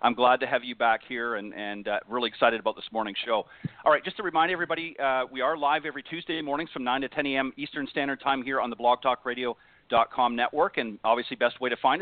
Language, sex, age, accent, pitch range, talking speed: English, male, 40-59, American, 120-145 Hz, 240 wpm